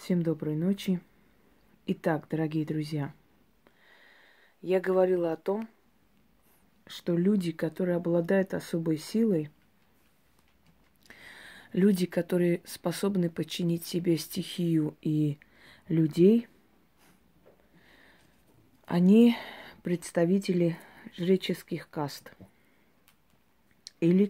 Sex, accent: female, native